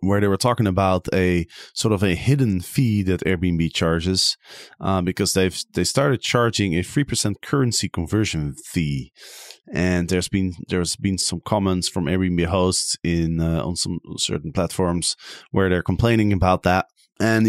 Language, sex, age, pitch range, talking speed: English, male, 30-49, 90-110 Hz, 165 wpm